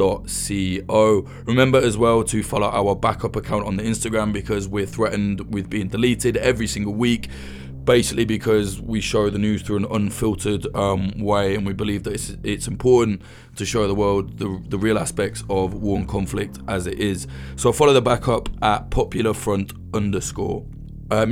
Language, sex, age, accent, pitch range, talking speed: English, male, 20-39, British, 100-115 Hz, 170 wpm